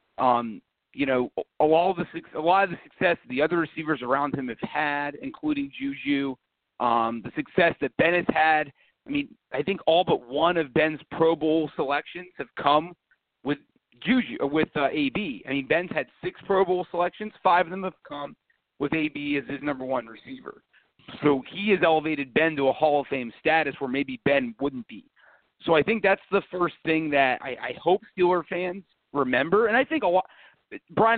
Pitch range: 140-180 Hz